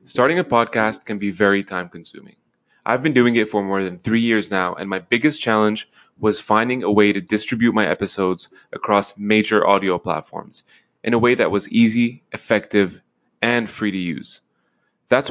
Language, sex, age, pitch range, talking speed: English, male, 20-39, 105-120 Hz, 175 wpm